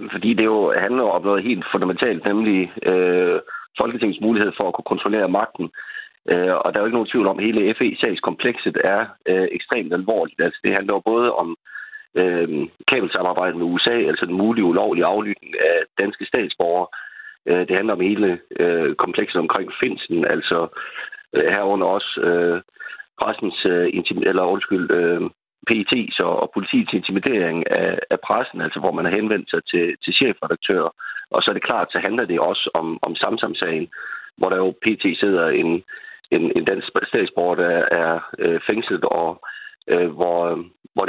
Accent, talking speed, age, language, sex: native, 170 wpm, 30-49, Danish, male